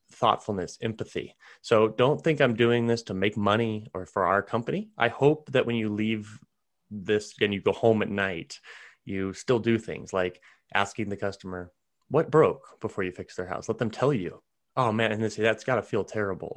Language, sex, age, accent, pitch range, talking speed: English, male, 30-49, American, 100-130 Hz, 205 wpm